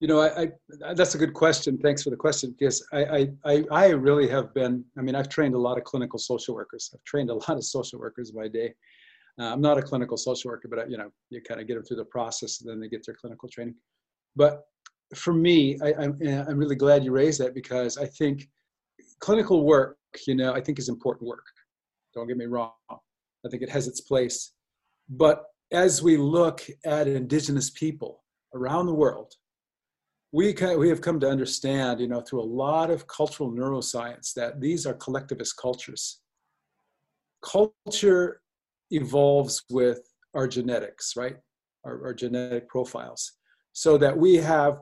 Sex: male